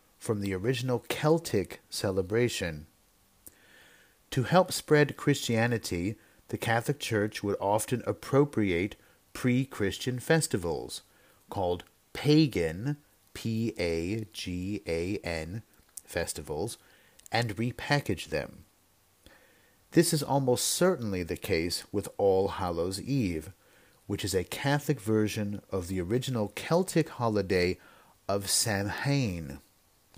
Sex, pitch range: male, 100-135 Hz